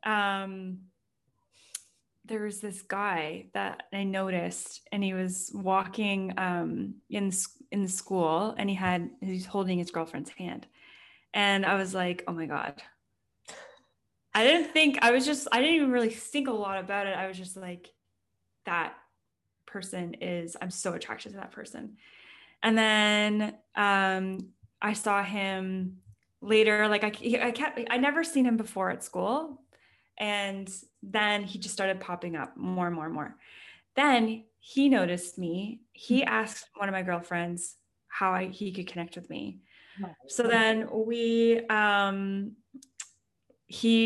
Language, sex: English, female